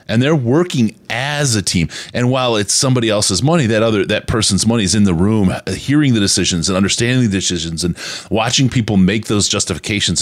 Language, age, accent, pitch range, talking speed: English, 30-49, American, 80-120 Hz, 200 wpm